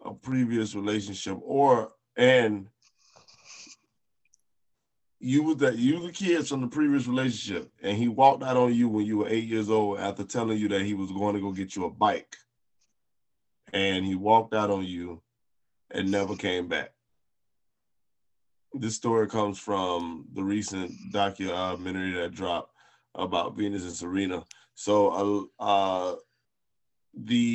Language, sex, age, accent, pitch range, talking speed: English, male, 20-39, American, 100-125 Hz, 150 wpm